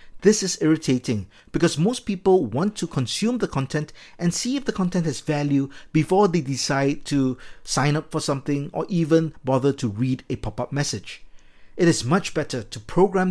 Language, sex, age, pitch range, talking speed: English, male, 50-69, 135-175 Hz, 180 wpm